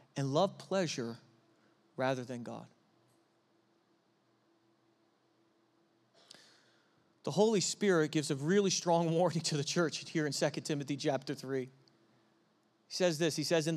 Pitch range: 150-200 Hz